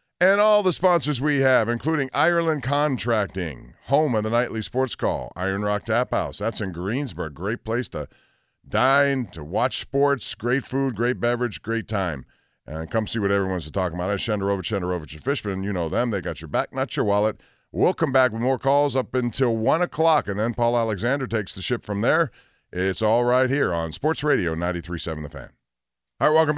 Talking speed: 200 wpm